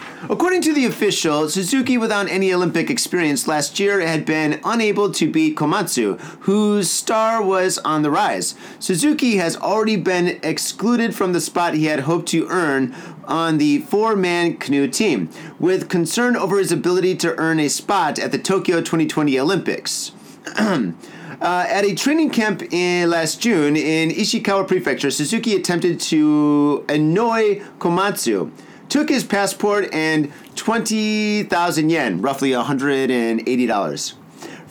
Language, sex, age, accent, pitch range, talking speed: English, male, 30-49, American, 165-225 Hz, 135 wpm